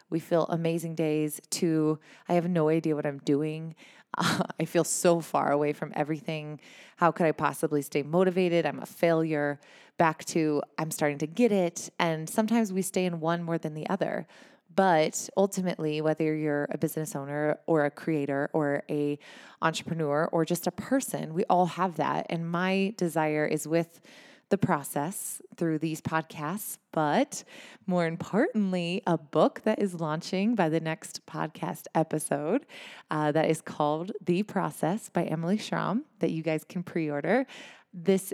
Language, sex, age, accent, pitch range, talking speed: English, female, 20-39, American, 155-180 Hz, 165 wpm